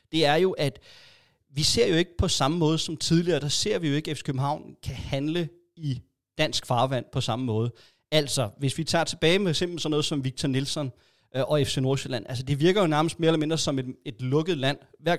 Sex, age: male, 30-49